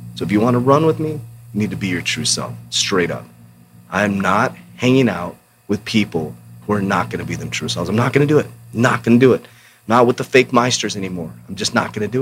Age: 30-49